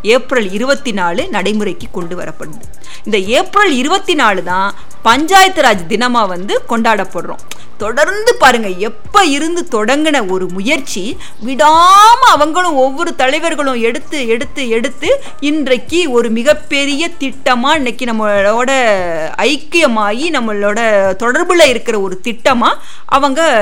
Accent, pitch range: native, 195-290 Hz